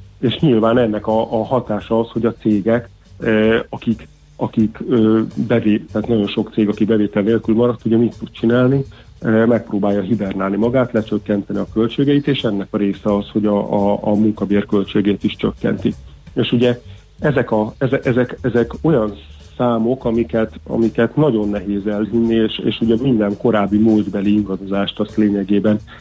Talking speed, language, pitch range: 160 wpm, Hungarian, 100-115 Hz